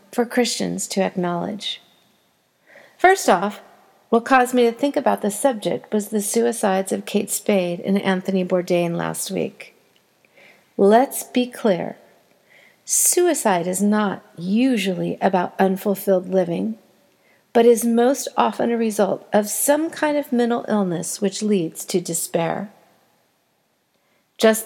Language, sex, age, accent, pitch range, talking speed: English, female, 40-59, American, 195-245 Hz, 125 wpm